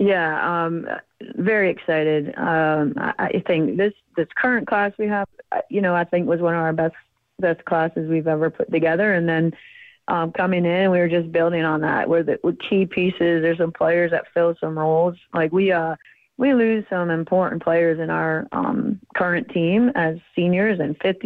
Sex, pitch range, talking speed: female, 160-185 Hz, 195 wpm